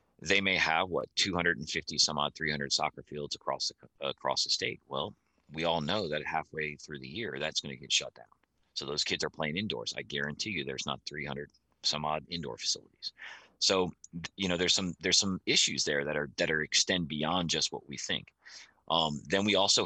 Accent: American